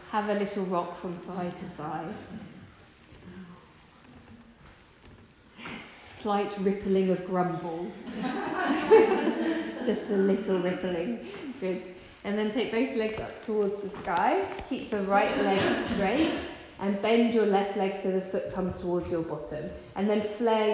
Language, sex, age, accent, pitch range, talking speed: English, female, 30-49, British, 180-215 Hz, 135 wpm